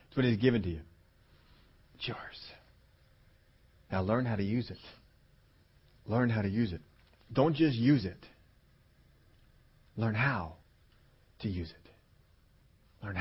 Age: 40-59